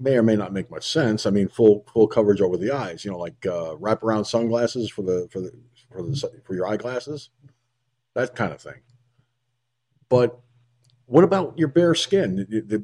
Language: English